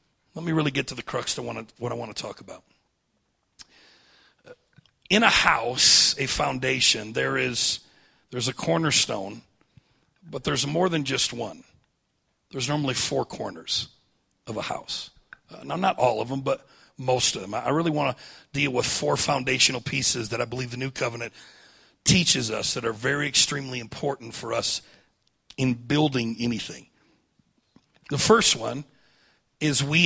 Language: English